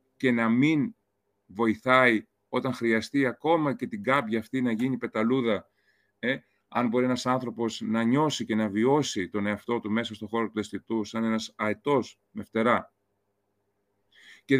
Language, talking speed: Greek, 155 wpm